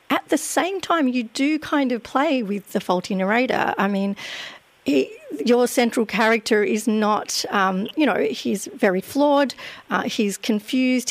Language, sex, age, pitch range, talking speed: English, female, 40-59, 200-250 Hz, 150 wpm